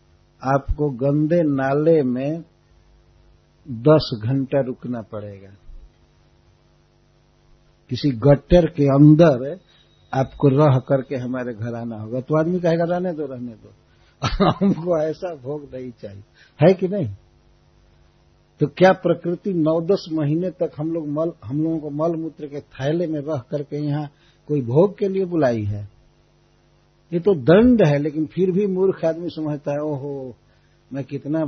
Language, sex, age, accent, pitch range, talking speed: Hindi, male, 60-79, native, 130-180 Hz, 140 wpm